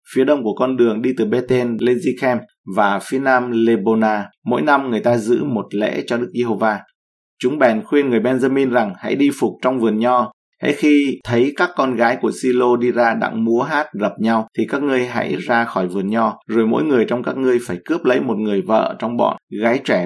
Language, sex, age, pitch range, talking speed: Vietnamese, male, 20-39, 110-125 Hz, 225 wpm